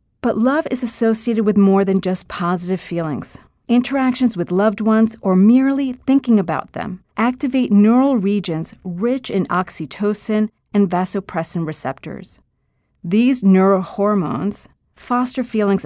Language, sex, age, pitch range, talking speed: English, female, 40-59, 175-230 Hz, 120 wpm